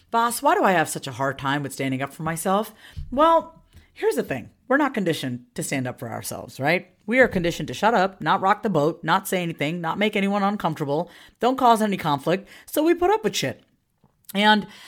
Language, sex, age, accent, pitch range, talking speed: English, female, 40-59, American, 150-210 Hz, 220 wpm